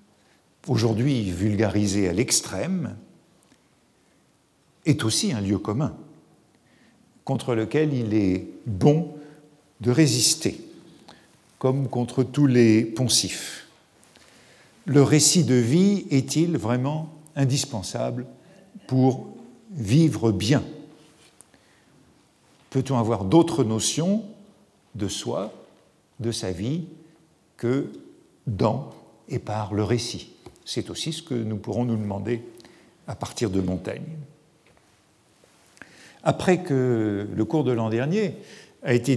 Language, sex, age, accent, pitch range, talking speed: French, male, 50-69, French, 115-155 Hz, 105 wpm